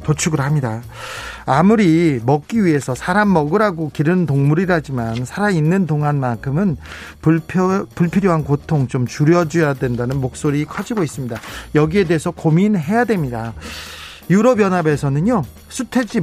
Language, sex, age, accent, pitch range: Korean, male, 40-59, native, 125-185 Hz